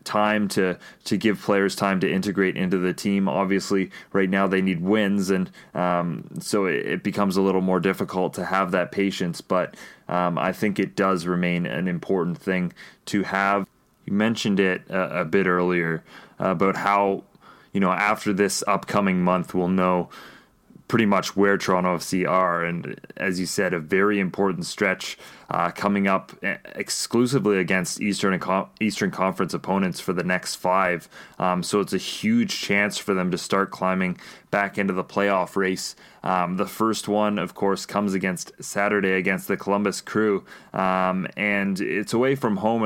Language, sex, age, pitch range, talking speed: English, male, 20-39, 90-100 Hz, 170 wpm